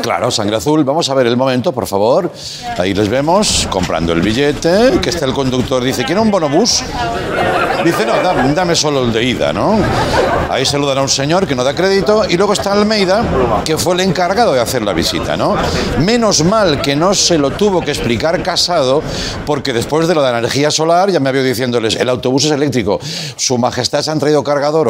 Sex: male